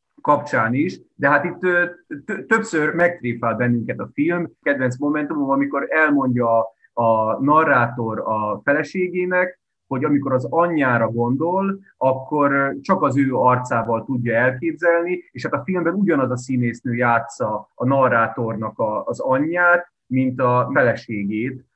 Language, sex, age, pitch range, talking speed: Hungarian, male, 30-49, 120-160 Hz, 125 wpm